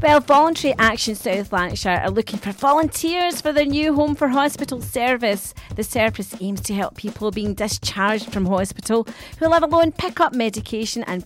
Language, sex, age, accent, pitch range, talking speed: English, female, 40-59, British, 200-285 Hz, 175 wpm